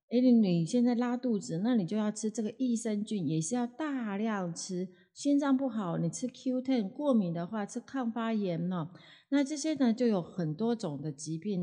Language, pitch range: Chinese, 155-215 Hz